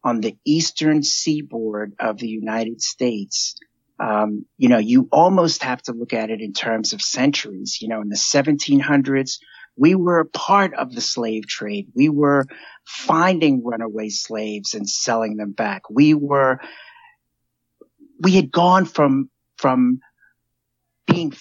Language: English